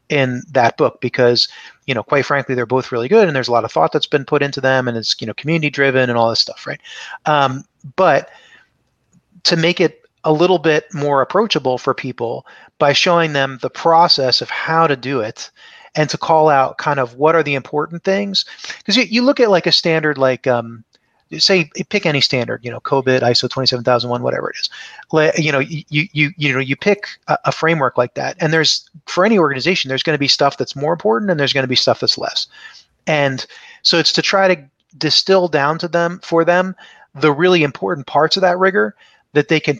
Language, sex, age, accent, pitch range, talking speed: English, male, 30-49, American, 130-165 Hz, 215 wpm